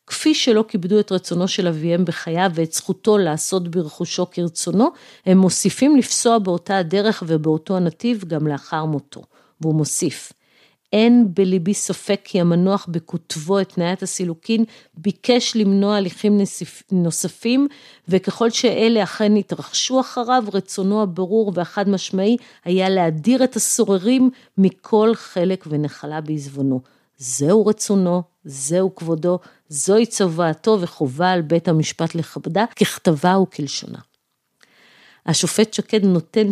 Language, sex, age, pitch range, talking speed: Hebrew, female, 50-69, 165-210 Hz, 115 wpm